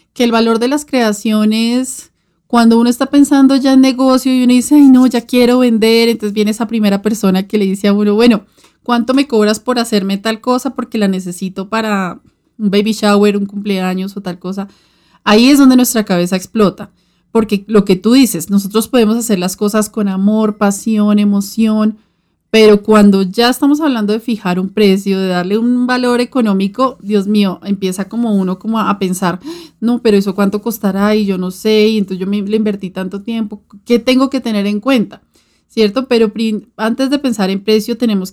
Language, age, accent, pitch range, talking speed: Spanish, 30-49, Colombian, 195-235 Hz, 195 wpm